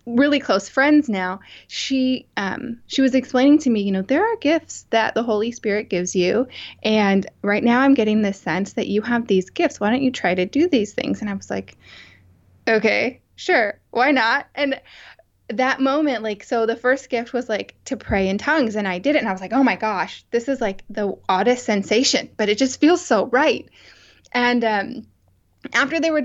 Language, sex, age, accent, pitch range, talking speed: English, female, 10-29, American, 210-260 Hz, 210 wpm